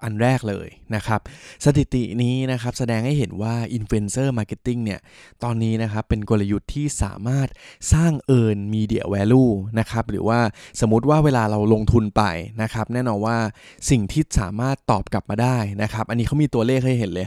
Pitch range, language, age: 105-125 Hz, Thai, 20-39